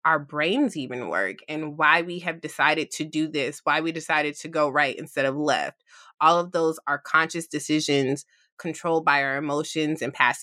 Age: 20-39